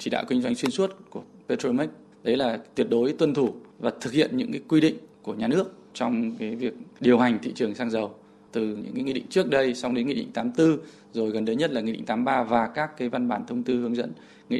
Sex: male